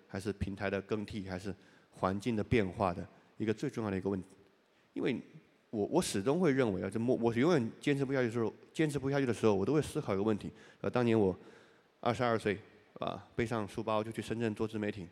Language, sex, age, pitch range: Chinese, male, 20-39, 100-130 Hz